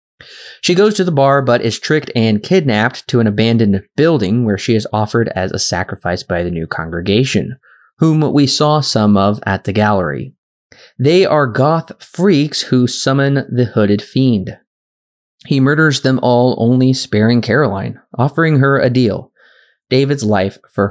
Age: 20-39